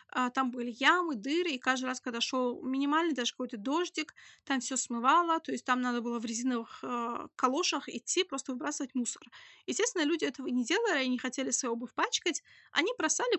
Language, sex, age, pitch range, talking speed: Russian, female, 20-39, 245-310 Hz, 185 wpm